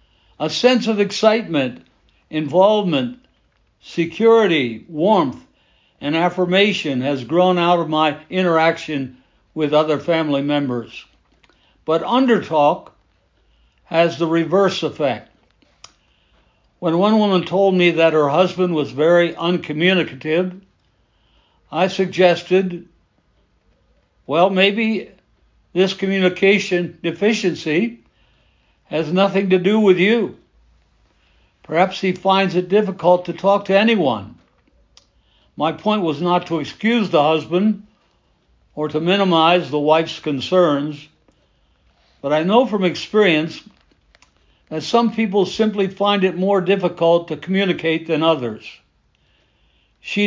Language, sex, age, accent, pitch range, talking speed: English, male, 60-79, American, 150-190 Hz, 105 wpm